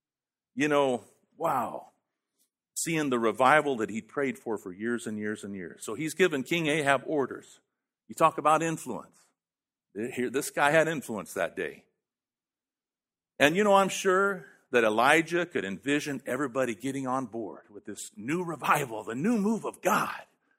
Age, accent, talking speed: 50-69, American, 155 wpm